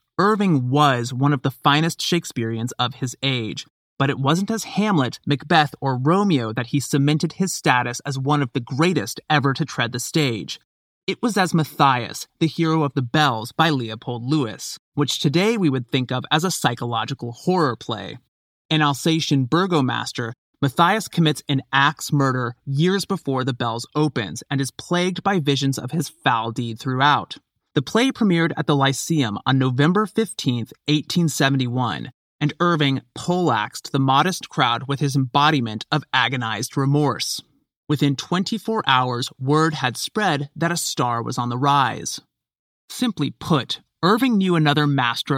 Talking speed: 160 wpm